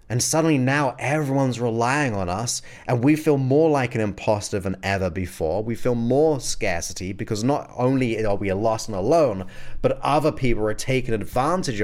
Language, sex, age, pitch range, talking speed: English, male, 30-49, 100-130 Hz, 175 wpm